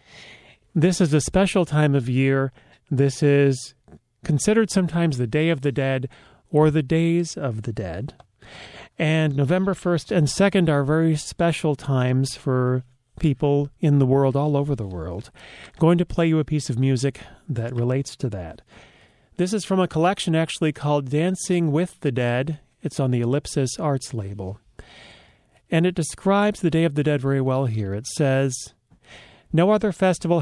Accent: American